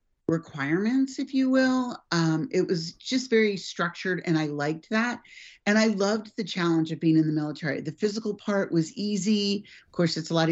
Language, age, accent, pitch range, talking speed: English, 40-59, American, 155-195 Hz, 195 wpm